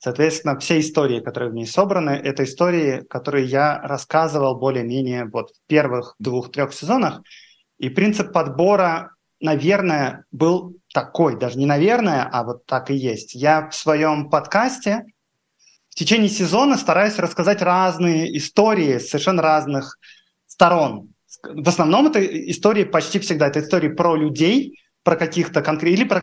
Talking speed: 140 wpm